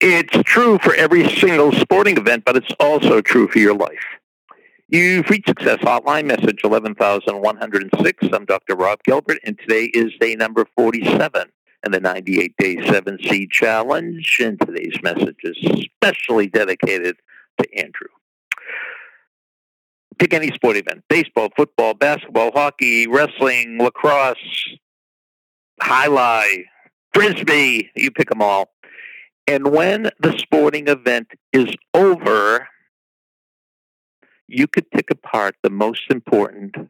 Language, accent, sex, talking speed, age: English, American, male, 120 wpm, 60-79